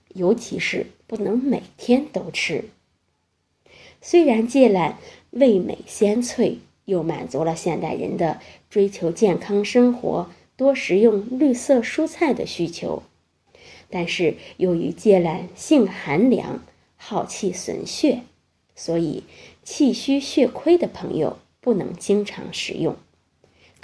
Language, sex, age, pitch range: Chinese, female, 20-39, 190-275 Hz